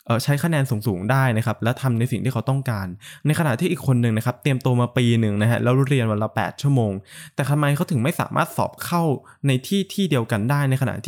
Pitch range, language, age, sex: 115-150 Hz, Thai, 20-39, male